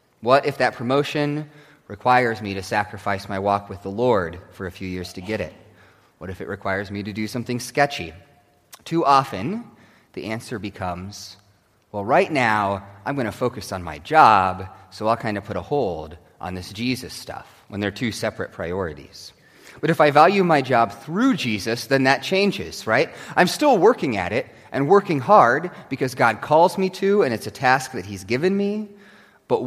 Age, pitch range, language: 30-49, 105-160 Hz, English